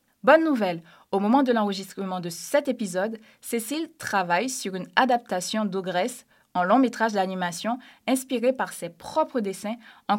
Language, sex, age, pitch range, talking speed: French, female, 20-39, 190-255 Hz, 145 wpm